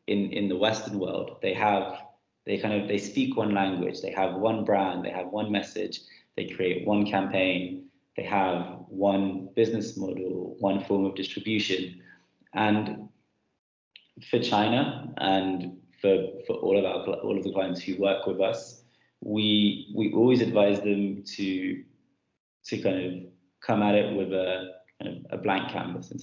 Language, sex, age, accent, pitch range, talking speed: English, male, 20-39, British, 95-110 Hz, 165 wpm